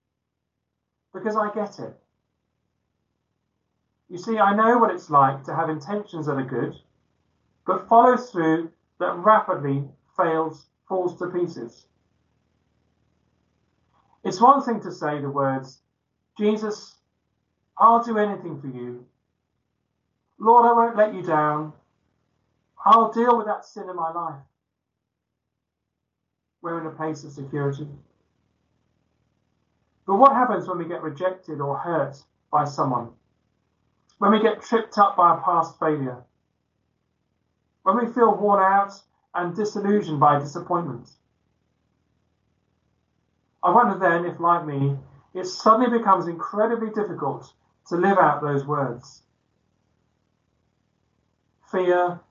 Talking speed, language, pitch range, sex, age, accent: 120 wpm, English, 135-200 Hz, male, 40-59, British